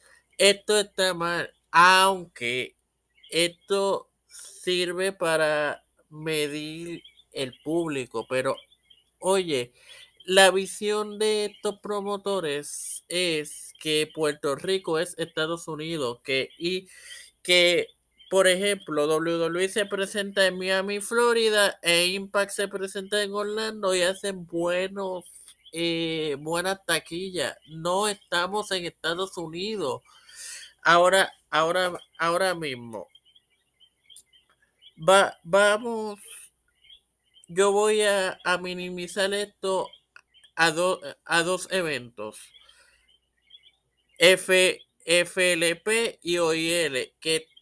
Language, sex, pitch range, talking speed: Spanish, male, 165-205 Hz, 95 wpm